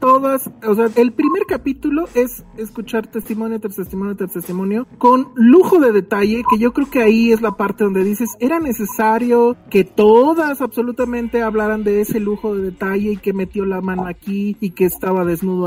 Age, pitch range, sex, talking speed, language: 40-59, 195-255 Hz, male, 180 wpm, Spanish